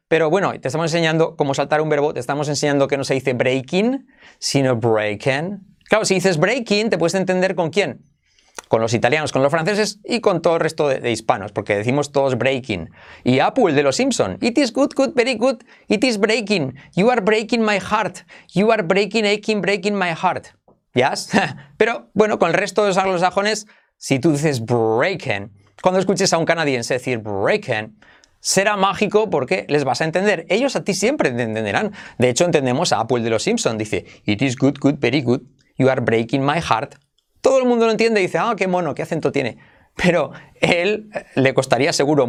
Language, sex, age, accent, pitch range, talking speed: English, male, 30-49, Spanish, 130-195 Hz, 205 wpm